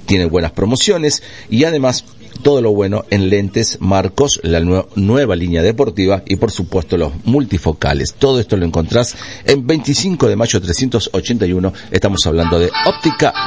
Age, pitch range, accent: 50-69, 90-120 Hz, Argentinian